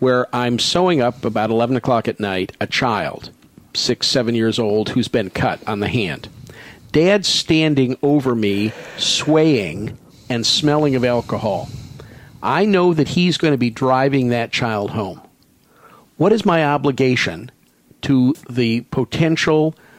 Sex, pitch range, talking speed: male, 120-155 Hz, 145 wpm